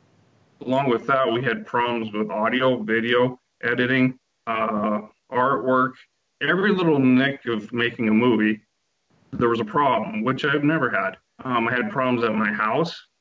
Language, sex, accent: English, male, American